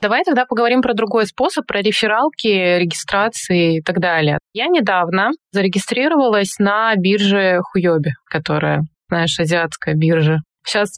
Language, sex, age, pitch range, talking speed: Russian, female, 20-39, 185-245 Hz, 125 wpm